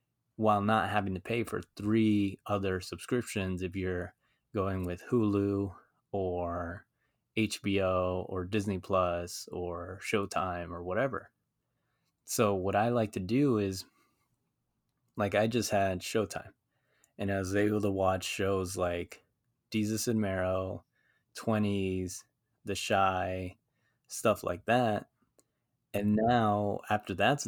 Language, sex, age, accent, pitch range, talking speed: English, male, 20-39, American, 95-110 Hz, 120 wpm